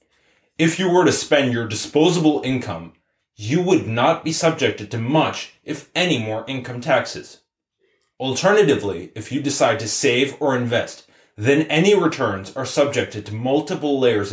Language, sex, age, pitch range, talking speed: English, male, 20-39, 110-150 Hz, 150 wpm